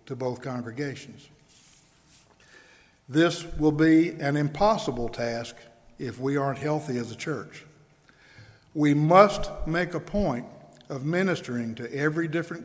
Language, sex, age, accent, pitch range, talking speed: English, male, 60-79, American, 135-170 Hz, 120 wpm